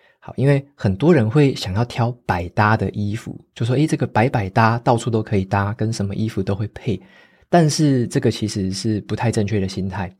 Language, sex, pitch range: Chinese, male, 100-130 Hz